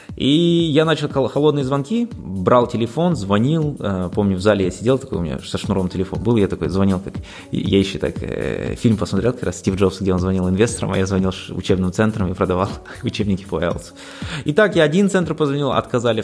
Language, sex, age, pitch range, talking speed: Russian, male, 20-39, 100-135 Hz, 195 wpm